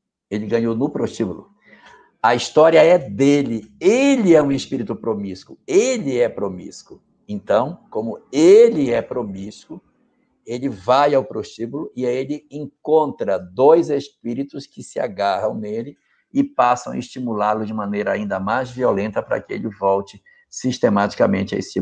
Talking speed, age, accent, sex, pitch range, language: 140 wpm, 60-79, Brazilian, male, 105-150 Hz, Portuguese